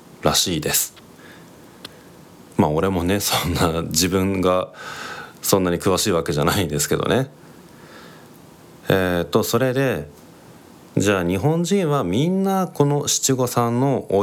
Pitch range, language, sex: 85-130 Hz, Japanese, male